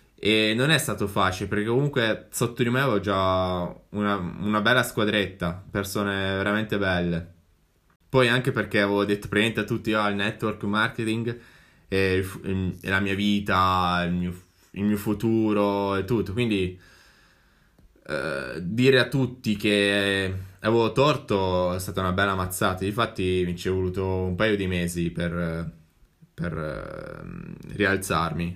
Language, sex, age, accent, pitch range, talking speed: Italian, male, 10-29, native, 95-115 Hz, 145 wpm